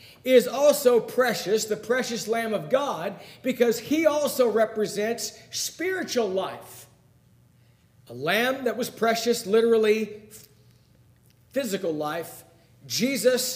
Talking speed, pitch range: 100 wpm, 180-250 Hz